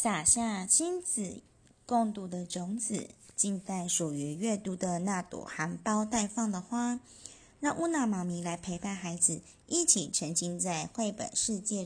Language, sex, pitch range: Chinese, female, 175-230 Hz